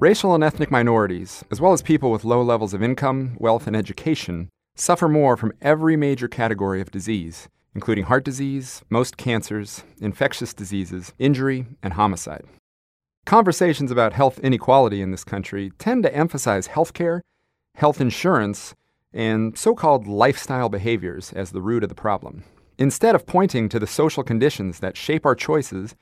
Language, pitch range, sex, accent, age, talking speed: English, 100-145 Hz, male, American, 40-59, 160 wpm